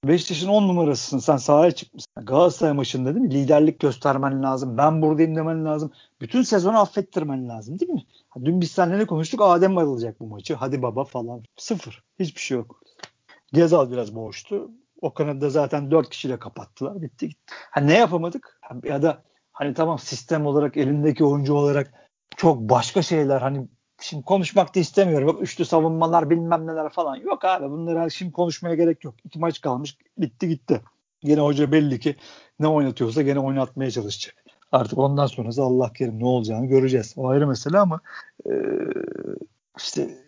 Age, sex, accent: 50-69, male, native